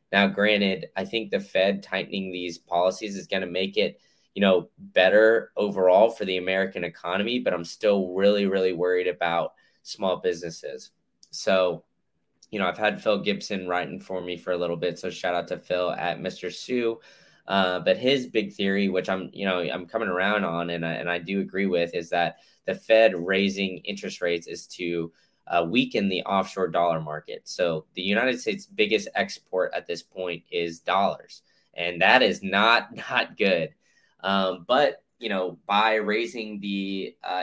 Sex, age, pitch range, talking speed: male, 20-39, 90-100 Hz, 180 wpm